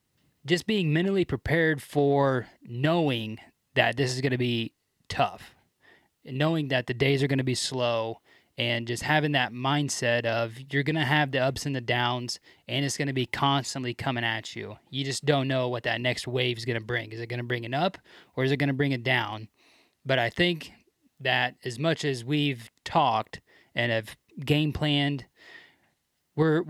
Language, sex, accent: English, male, American